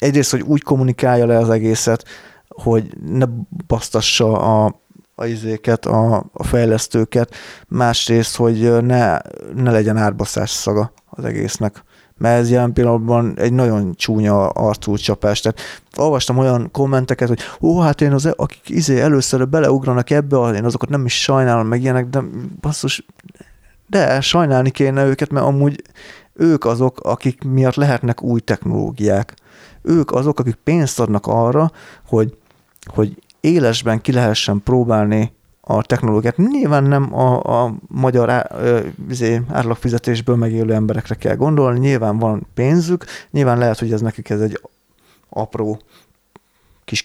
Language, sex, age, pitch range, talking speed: Hungarian, male, 30-49, 110-135 Hz, 135 wpm